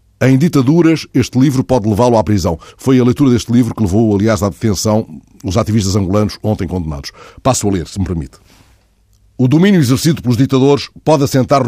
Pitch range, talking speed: 105-140 Hz, 185 wpm